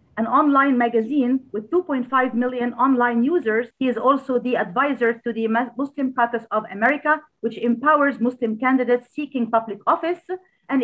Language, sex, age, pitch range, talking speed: Arabic, female, 40-59, 230-275 Hz, 150 wpm